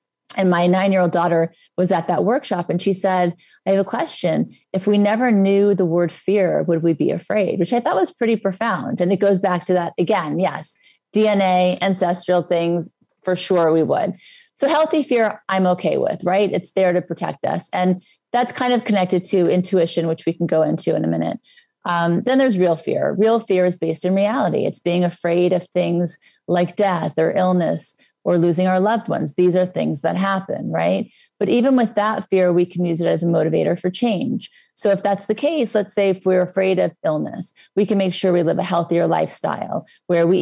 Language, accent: English, American